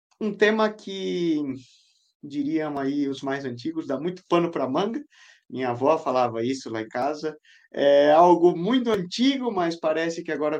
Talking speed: 165 wpm